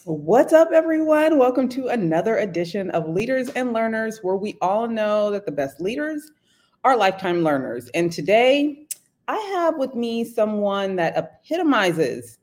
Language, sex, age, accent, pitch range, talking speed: English, female, 30-49, American, 160-245 Hz, 150 wpm